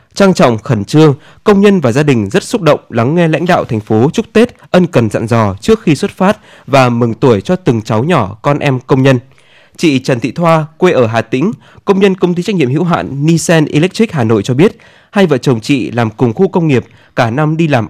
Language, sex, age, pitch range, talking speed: Vietnamese, male, 20-39, 115-165 Hz, 250 wpm